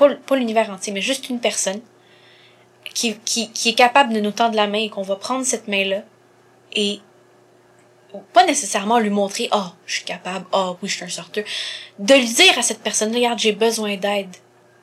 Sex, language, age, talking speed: female, French, 20-39, 200 wpm